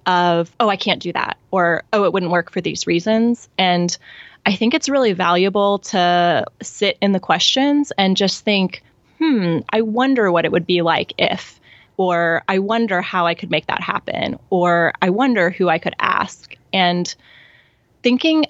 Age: 20-39